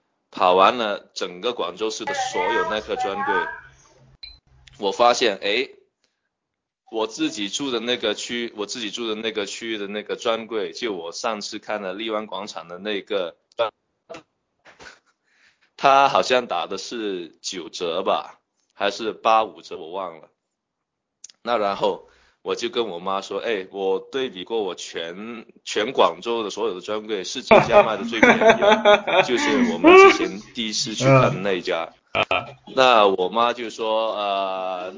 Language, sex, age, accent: Chinese, male, 20-39, native